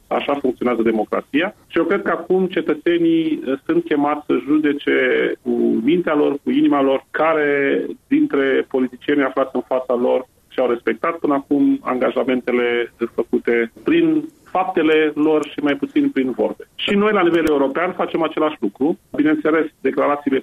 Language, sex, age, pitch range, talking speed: Romanian, male, 30-49, 125-160 Hz, 145 wpm